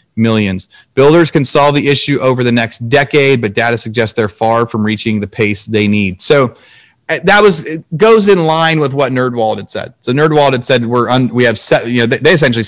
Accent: American